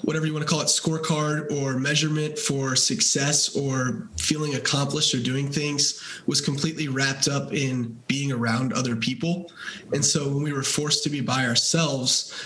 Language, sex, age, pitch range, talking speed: English, male, 20-39, 130-155 Hz, 170 wpm